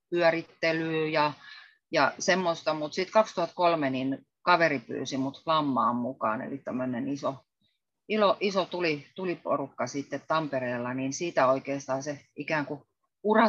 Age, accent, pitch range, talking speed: 30-49, native, 135-170 Hz, 125 wpm